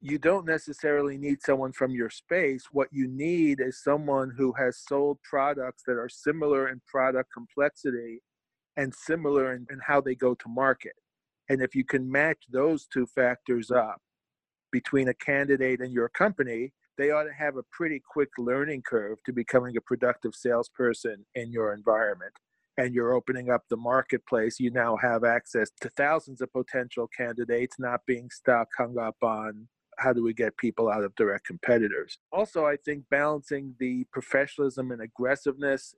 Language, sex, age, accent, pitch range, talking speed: English, male, 50-69, American, 125-140 Hz, 170 wpm